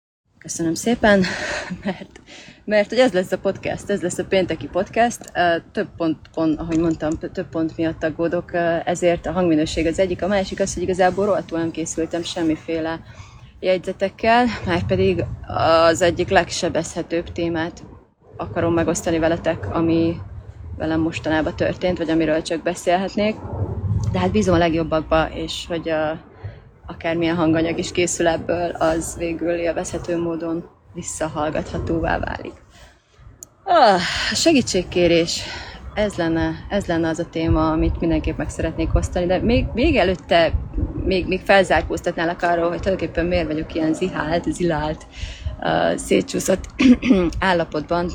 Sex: female